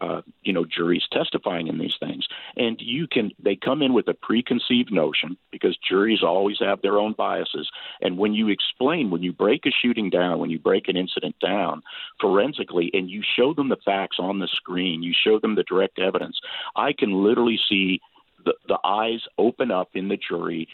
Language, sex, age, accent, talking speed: English, male, 50-69, American, 200 wpm